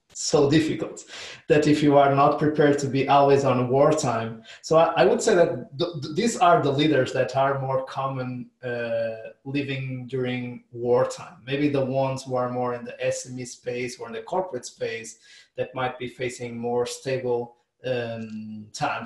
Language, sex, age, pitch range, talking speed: English, male, 20-39, 120-140 Hz, 175 wpm